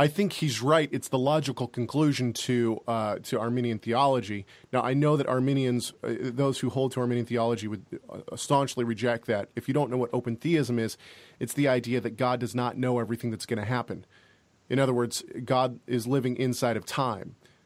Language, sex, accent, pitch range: English, male, American, 115-140 Hz